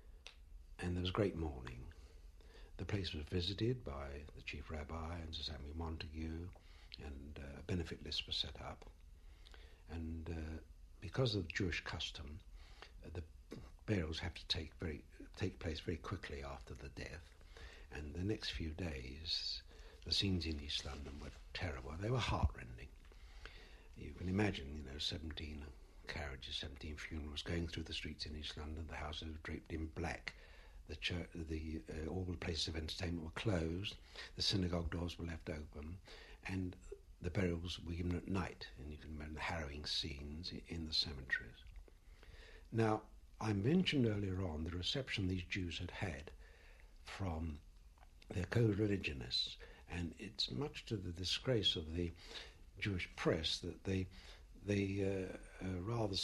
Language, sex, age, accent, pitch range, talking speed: English, male, 60-79, British, 75-90 Hz, 155 wpm